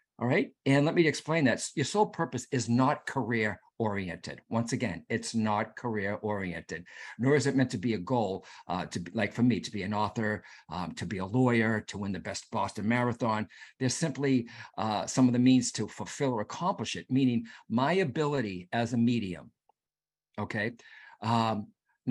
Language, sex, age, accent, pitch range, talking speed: English, male, 50-69, American, 105-135 Hz, 185 wpm